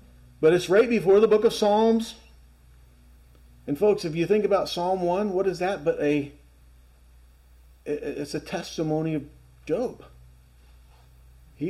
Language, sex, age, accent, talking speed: English, male, 50-69, American, 135 wpm